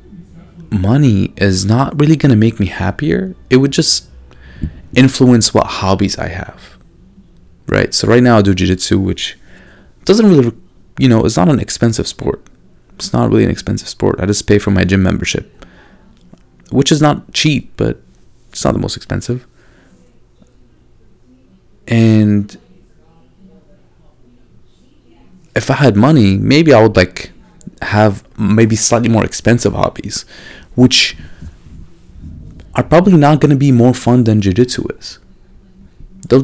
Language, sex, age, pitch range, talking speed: English, male, 30-49, 95-125 Hz, 140 wpm